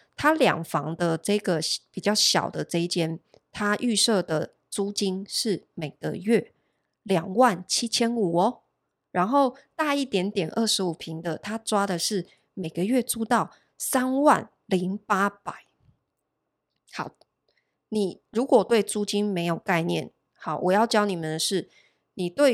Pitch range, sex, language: 170-220 Hz, female, Chinese